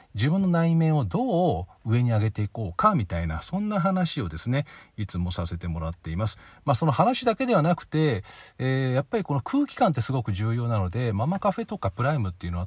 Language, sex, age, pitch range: Japanese, male, 40-59, 95-155 Hz